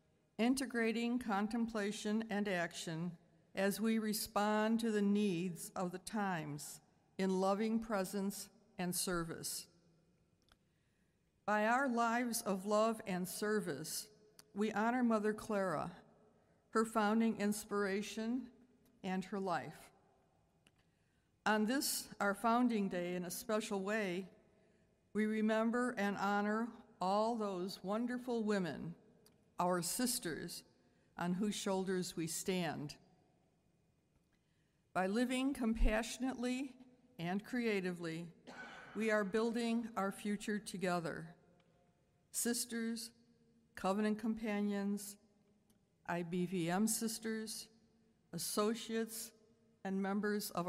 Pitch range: 180-220 Hz